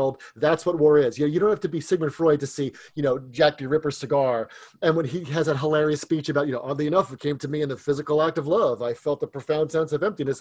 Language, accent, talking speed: English, American, 290 wpm